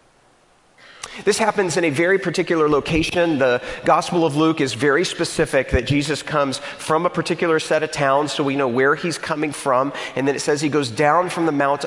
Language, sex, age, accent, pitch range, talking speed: English, male, 40-59, American, 130-160 Hz, 200 wpm